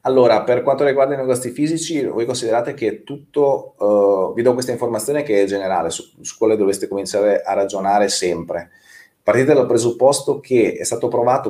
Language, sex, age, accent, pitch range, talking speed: Italian, male, 30-49, native, 100-140 Hz, 175 wpm